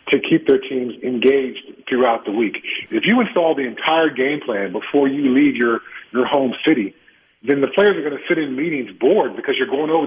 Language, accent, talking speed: English, American, 215 wpm